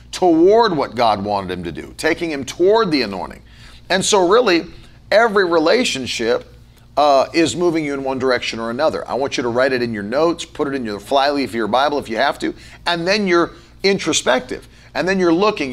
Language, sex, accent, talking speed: English, male, American, 215 wpm